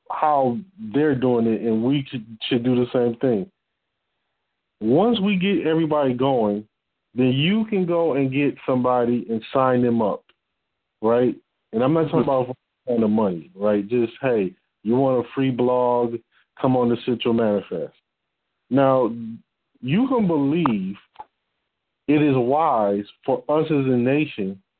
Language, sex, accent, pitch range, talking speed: English, male, American, 120-150 Hz, 150 wpm